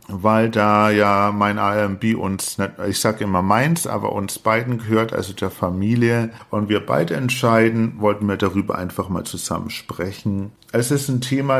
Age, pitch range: 50-69, 105-120 Hz